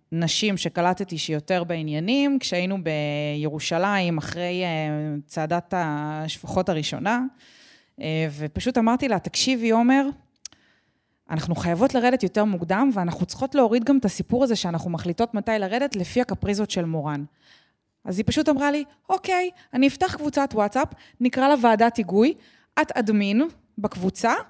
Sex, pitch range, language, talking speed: female, 175-250 Hz, Hebrew, 125 wpm